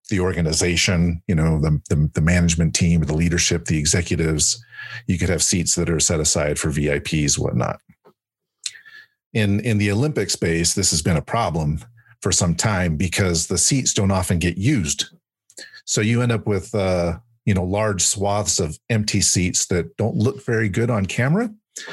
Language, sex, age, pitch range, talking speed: English, male, 40-59, 95-115 Hz, 170 wpm